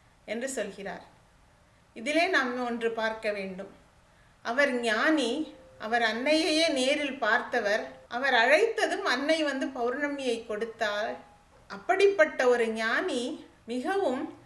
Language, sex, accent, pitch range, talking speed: English, female, Indian, 225-280 Hz, 95 wpm